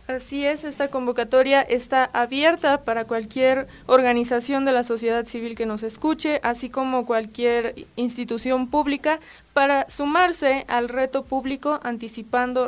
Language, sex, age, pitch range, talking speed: Spanish, female, 20-39, 230-265 Hz, 130 wpm